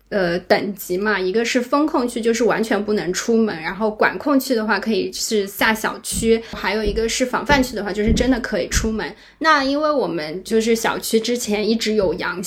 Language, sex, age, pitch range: Chinese, female, 20-39, 210-260 Hz